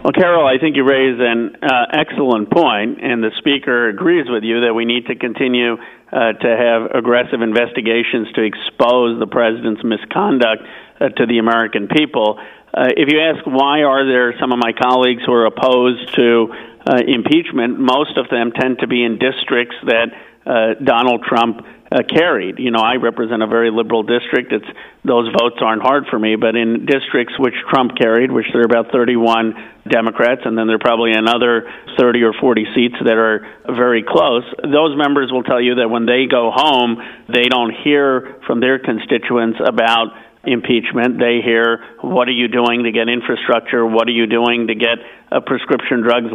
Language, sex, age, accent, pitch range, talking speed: English, male, 50-69, American, 115-125 Hz, 185 wpm